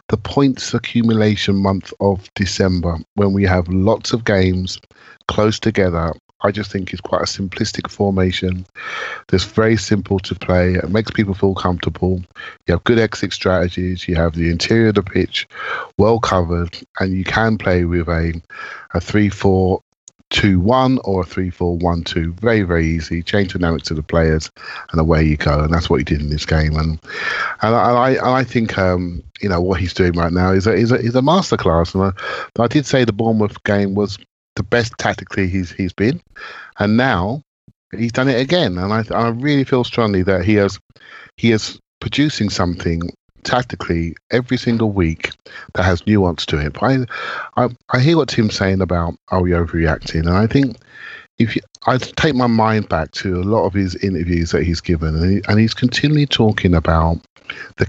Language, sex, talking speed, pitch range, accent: English, male, 195 wpm, 85-110 Hz, British